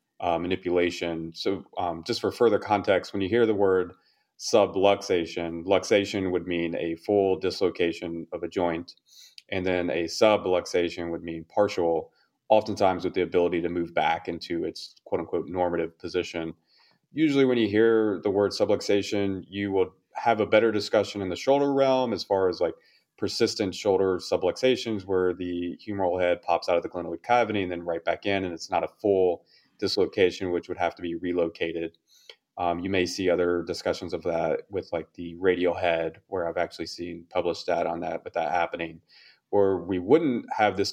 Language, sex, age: English, male, 30-49